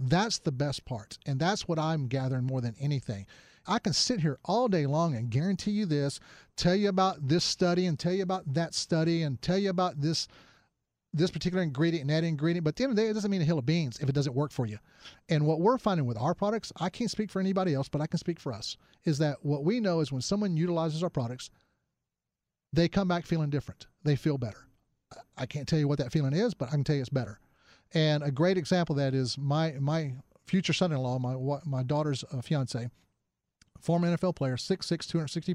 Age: 40-59